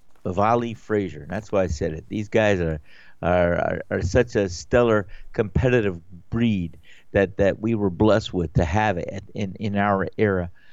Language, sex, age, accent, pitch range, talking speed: English, male, 50-69, American, 100-135 Hz, 180 wpm